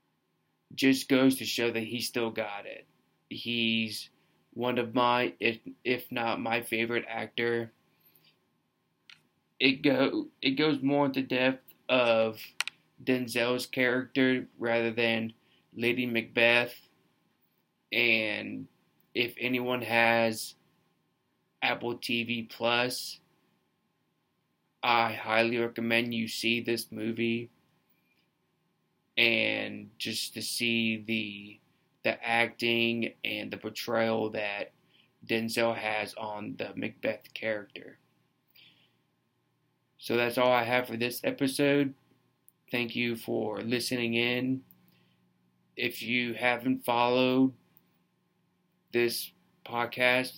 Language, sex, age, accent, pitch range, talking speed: English, male, 20-39, American, 115-125 Hz, 100 wpm